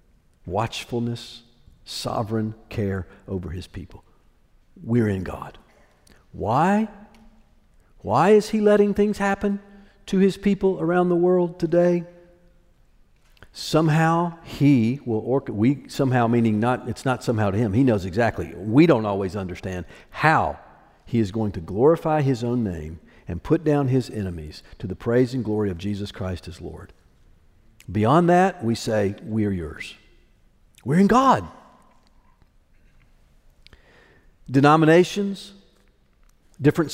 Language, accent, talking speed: English, American, 125 wpm